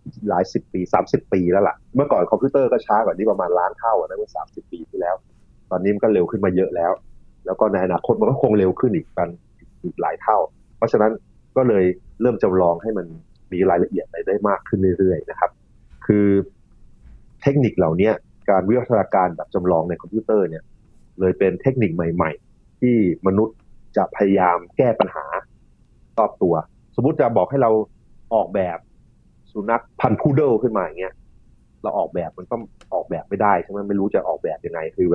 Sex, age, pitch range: male, 30-49, 90-110 Hz